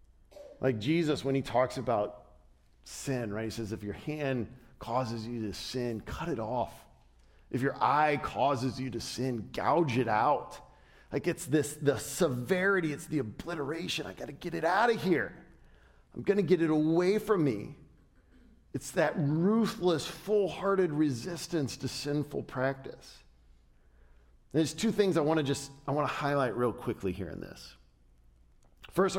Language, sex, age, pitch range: English, male, 40-59, 120-175 Hz